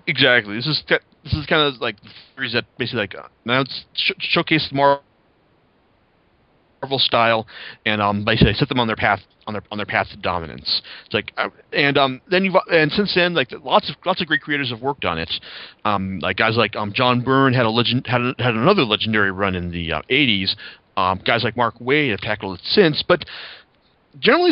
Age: 30-49